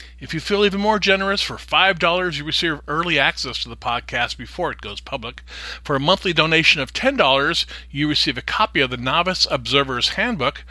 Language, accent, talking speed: English, American, 195 wpm